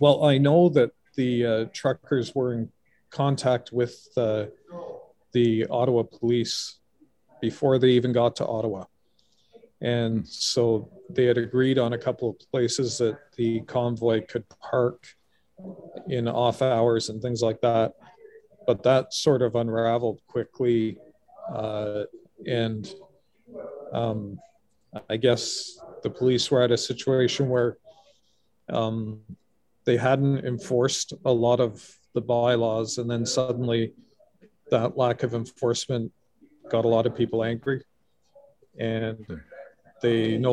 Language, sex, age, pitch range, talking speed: English, male, 40-59, 115-135 Hz, 125 wpm